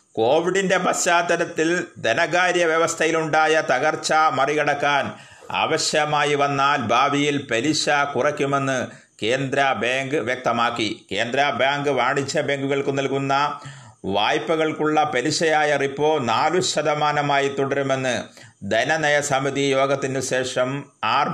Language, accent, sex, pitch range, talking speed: Malayalam, native, male, 130-155 Hz, 85 wpm